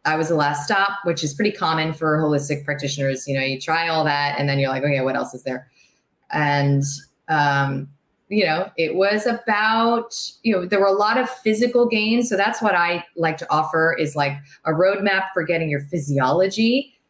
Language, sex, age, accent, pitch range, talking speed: English, female, 30-49, American, 145-195 Hz, 205 wpm